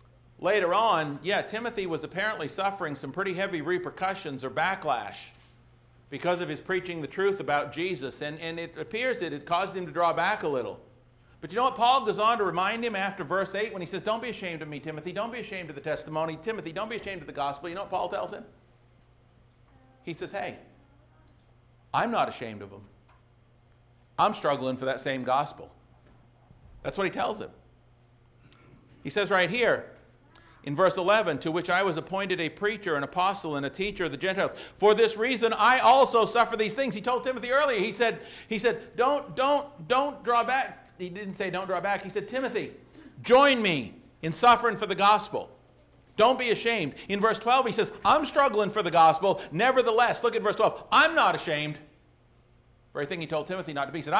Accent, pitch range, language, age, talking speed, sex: American, 140-220 Hz, English, 50-69, 205 wpm, male